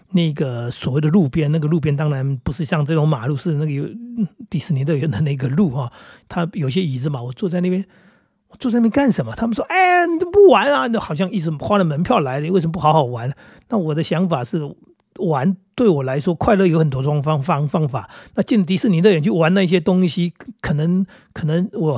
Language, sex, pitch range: Chinese, male, 140-190 Hz